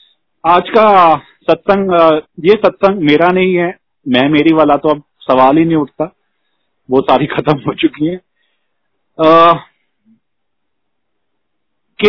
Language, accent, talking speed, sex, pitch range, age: Hindi, native, 120 wpm, male, 140-190 Hz, 40-59